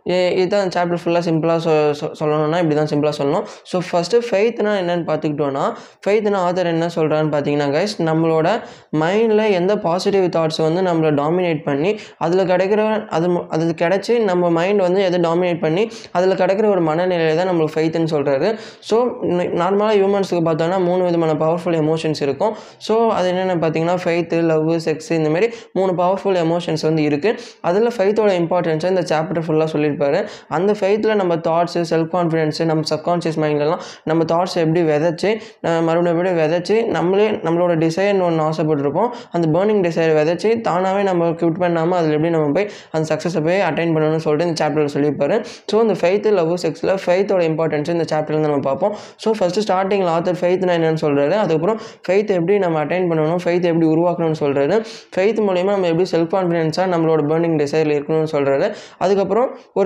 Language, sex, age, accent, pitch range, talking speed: Tamil, male, 20-39, native, 160-190 Hz, 80 wpm